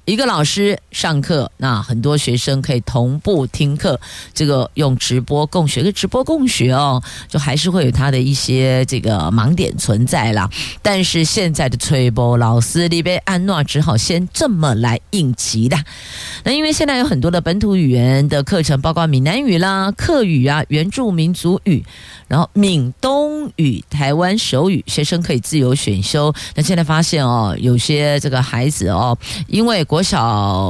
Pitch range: 125-180 Hz